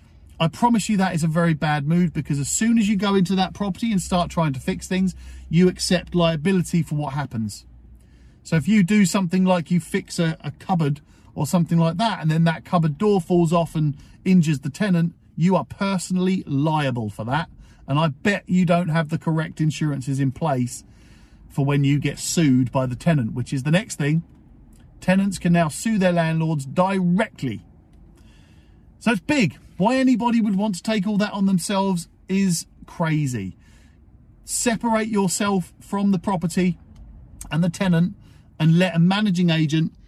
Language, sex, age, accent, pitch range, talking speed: English, male, 40-59, British, 145-185 Hz, 180 wpm